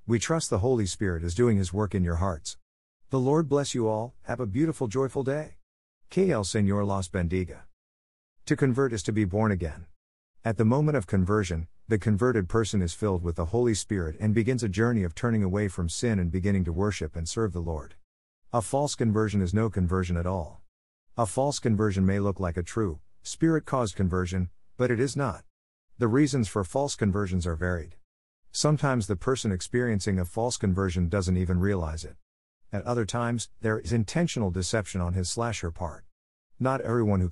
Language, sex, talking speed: English, male, 190 wpm